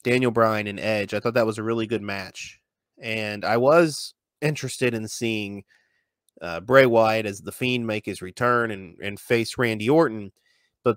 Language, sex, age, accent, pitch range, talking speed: English, male, 30-49, American, 110-150 Hz, 180 wpm